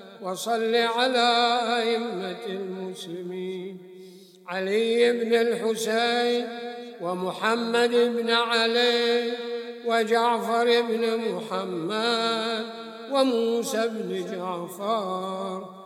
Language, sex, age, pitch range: English, male, 60-79, 210-240 Hz